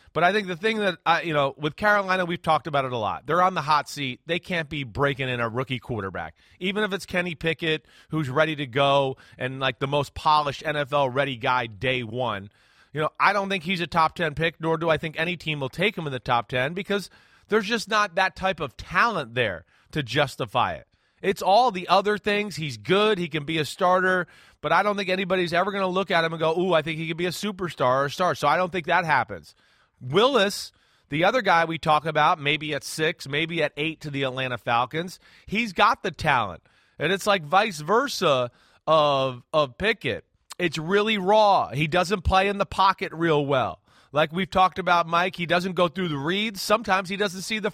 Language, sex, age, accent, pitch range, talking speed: English, male, 30-49, American, 145-190 Hz, 225 wpm